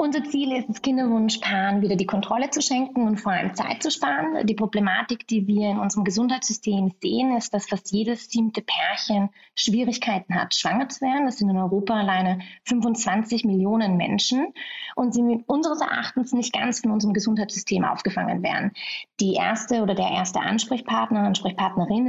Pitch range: 200-245 Hz